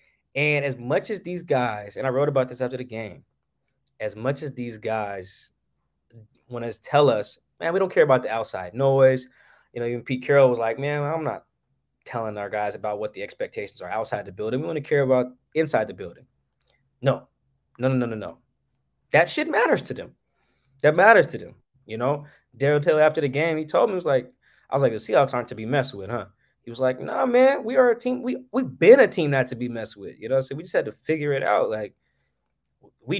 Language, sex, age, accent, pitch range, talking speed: English, male, 20-39, American, 115-150 Hz, 235 wpm